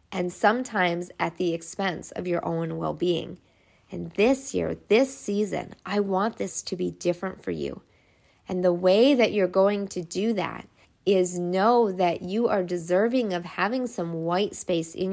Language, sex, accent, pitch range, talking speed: English, female, American, 175-205 Hz, 170 wpm